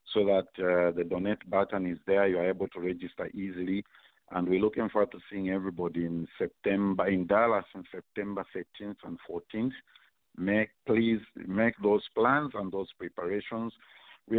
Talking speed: 165 wpm